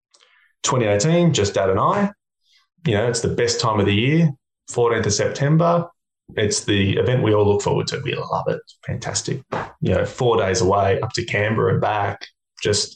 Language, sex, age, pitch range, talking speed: English, male, 20-39, 100-140 Hz, 190 wpm